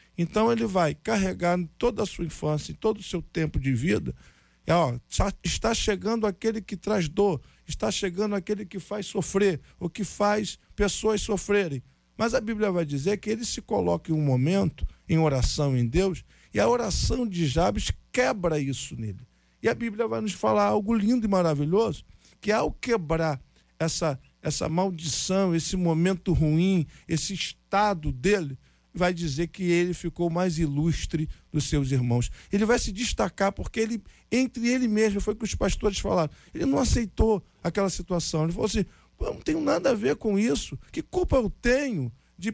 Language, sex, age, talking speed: Portuguese, male, 50-69, 175 wpm